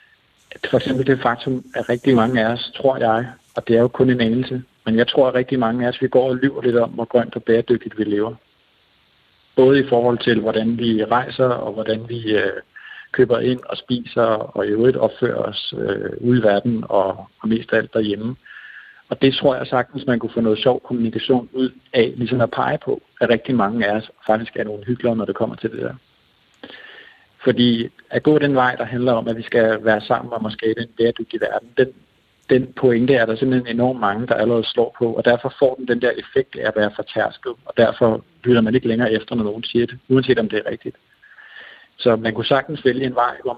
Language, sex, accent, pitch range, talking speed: Danish, male, native, 115-130 Hz, 225 wpm